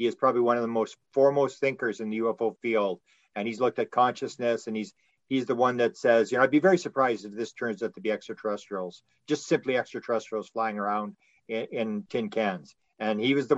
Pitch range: 110-130 Hz